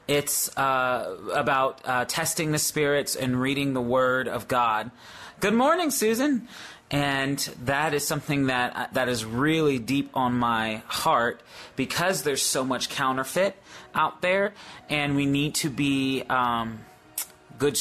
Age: 30-49